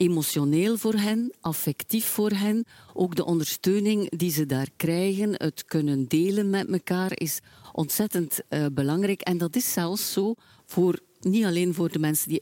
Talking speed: 165 wpm